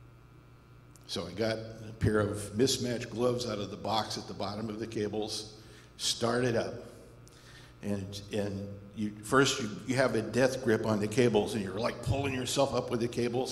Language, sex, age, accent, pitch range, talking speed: English, male, 60-79, American, 100-125 Hz, 185 wpm